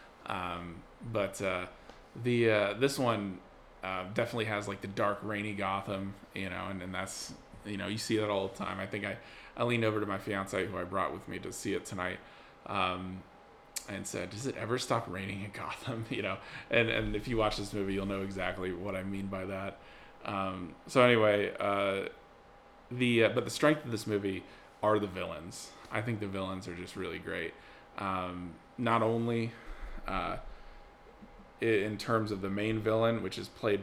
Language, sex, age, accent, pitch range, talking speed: English, male, 20-39, American, 95-115 Hz, 195 wpm